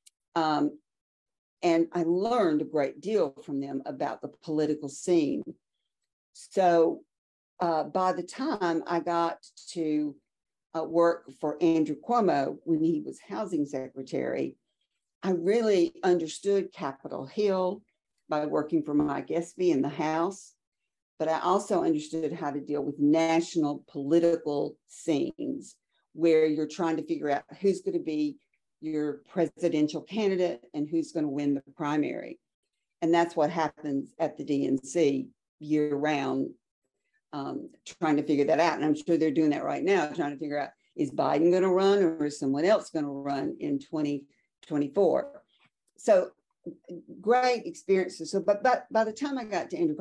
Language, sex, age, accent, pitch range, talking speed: English, female, 50-69, American, 150-195 Hz, 150 wpm